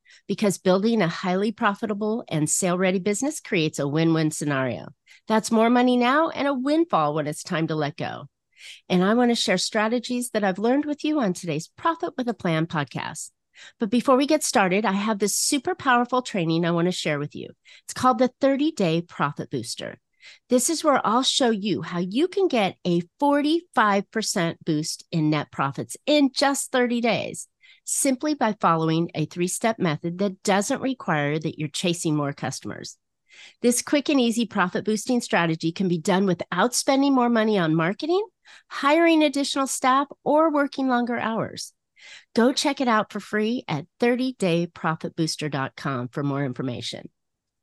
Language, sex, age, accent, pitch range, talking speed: English, female, 40-59, American, 170-255 Hz, 170 wpm